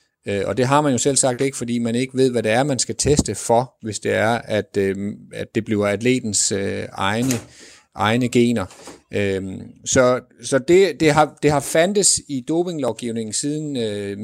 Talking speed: 190 wpm